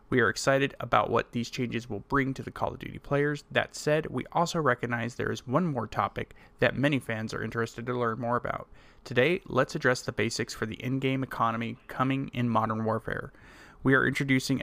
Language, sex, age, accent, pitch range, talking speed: English, male, 30-49, American, 115-140 Hz, 205 wpm